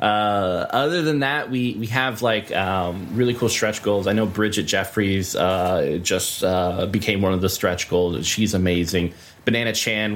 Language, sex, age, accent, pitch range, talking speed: English, male, 20-39, American, 95-115 Hz, 175 wpm